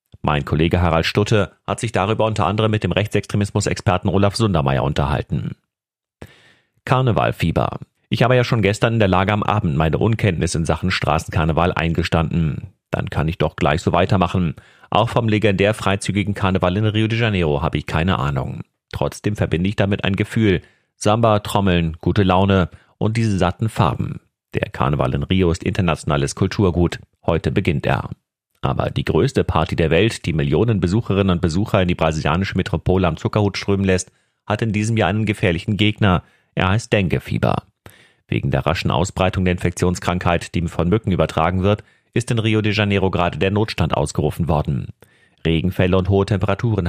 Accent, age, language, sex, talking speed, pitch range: German, 40-59, German, male, 165 wpm, 85-105 Hz